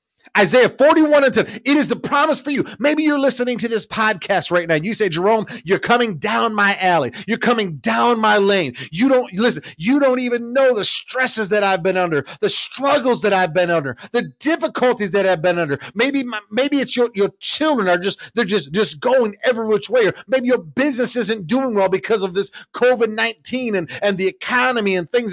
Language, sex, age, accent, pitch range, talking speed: English, male, 40-59, American, 205-260 Hz, 220 wpm